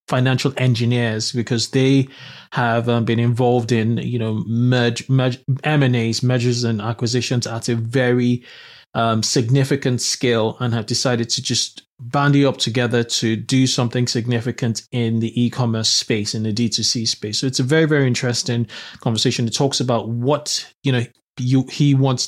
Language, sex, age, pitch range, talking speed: English, male, 20-39, 120-135 Hz, 160 wpm